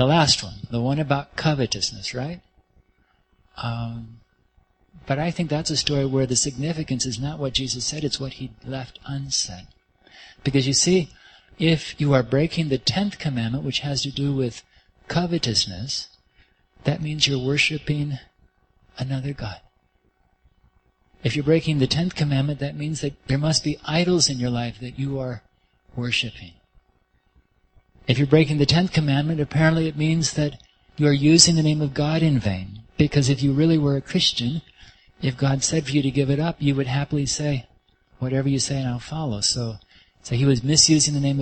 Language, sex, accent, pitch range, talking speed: English, male, American, 125-150 Hz, 175 wpm